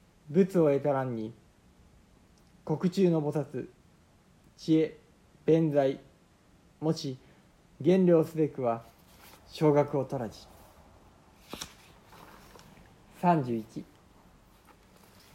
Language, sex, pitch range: Japanese, male, 130-165 Hz